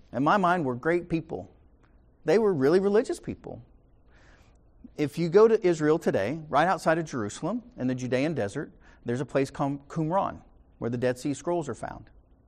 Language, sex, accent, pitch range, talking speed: English, male, American, 120-165 Hz, 180 wpm